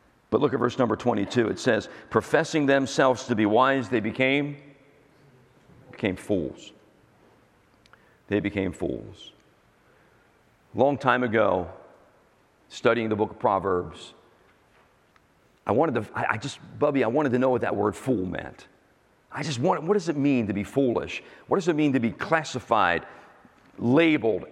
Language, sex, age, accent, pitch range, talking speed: English, male, 50-69, American, 105-140 Hz, 150 wpm